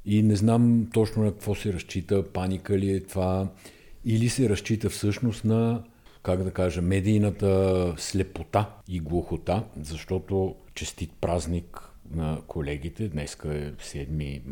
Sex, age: male, 60-79